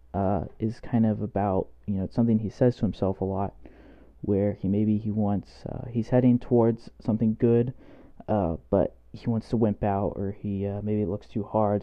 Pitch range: 95-115 Hz